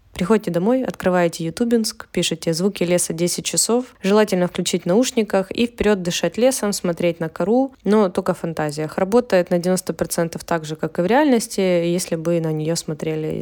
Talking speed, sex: 165 wpm, female